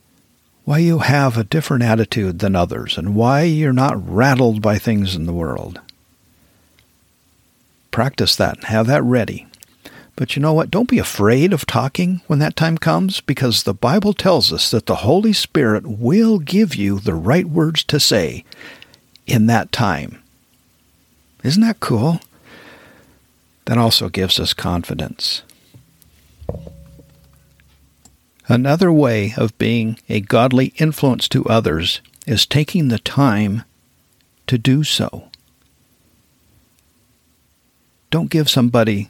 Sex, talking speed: male, 125 wpm